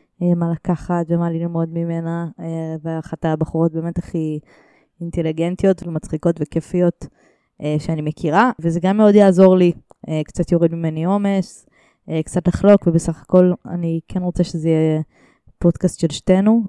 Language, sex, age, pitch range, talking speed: Hebrew, female, 20-39, 160-190 Hz, 125 wpm